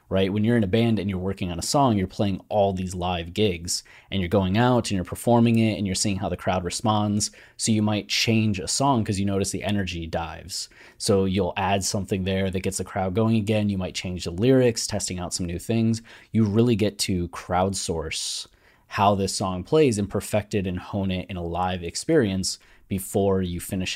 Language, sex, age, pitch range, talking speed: English, male, 20-39, 90-105 Hz, 220 wpm